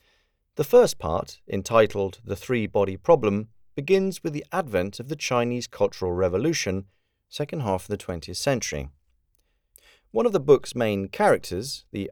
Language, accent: Czech, British